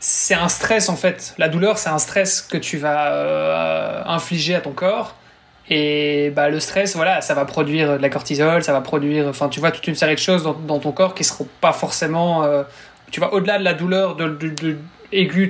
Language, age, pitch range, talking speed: French, 20-39, 150-180 Hz, 230 wpm